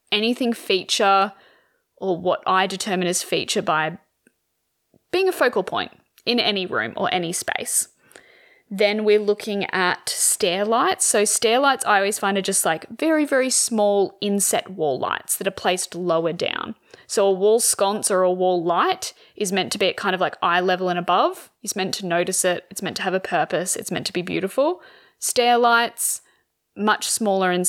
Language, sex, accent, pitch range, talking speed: English, female, Australian, 180-215 Hz, 185 wpm